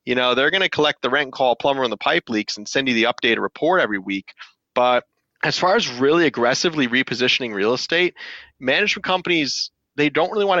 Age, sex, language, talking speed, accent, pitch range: 30-49, male, English, 220 wpm, American, 115-145 Hz